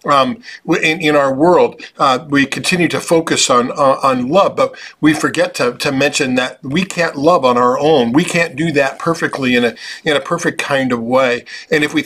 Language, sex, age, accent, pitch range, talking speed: English, male, 50-69, American, 135-170 Hz, 215 wpm